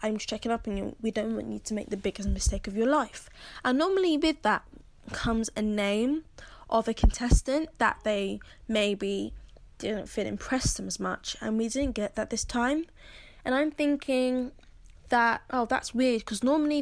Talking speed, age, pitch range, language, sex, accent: 185 wpm, 10-29, 210-260 Hz, English, female, British